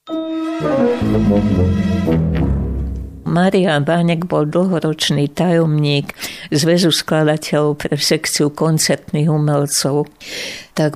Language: Slovak